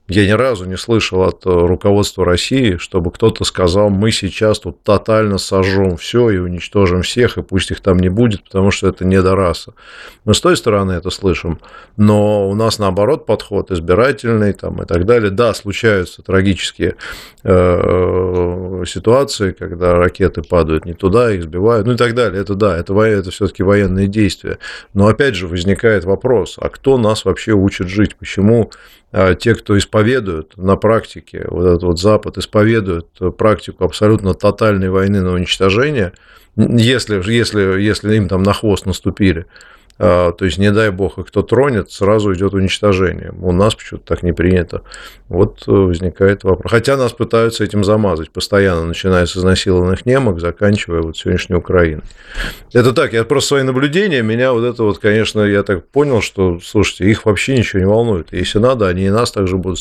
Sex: male